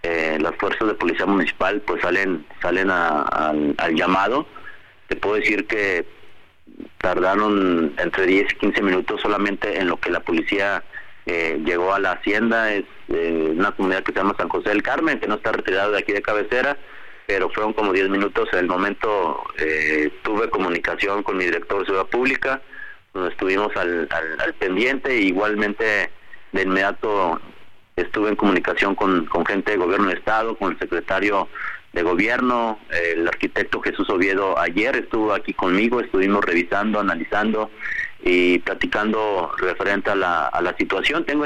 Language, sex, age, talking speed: Spanish, male, 30-49, 165 wpm